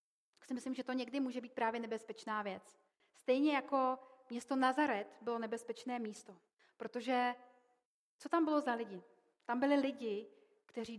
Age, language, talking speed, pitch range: 30-49, Czech, 140 wpm, 215-250 Hz